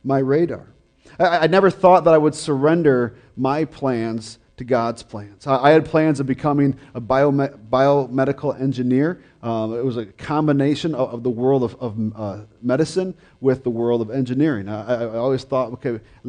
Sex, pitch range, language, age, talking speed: male, 120-145 Hz, English, 40-59, 175 wpm